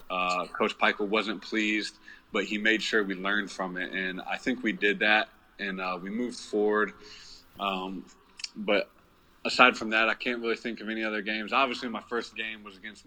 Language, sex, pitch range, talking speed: English, male, 95-110 Hz, 195 wpm